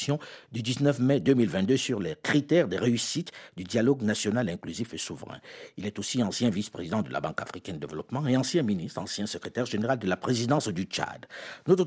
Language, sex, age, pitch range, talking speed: French, male, 60-79, 110-150 Hz, 190 wpm